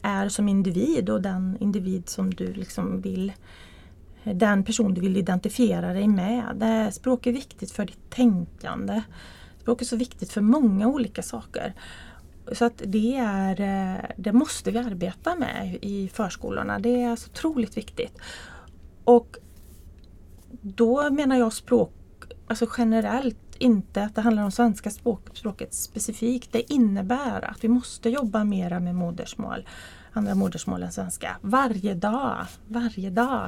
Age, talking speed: 30-49, 145 wpm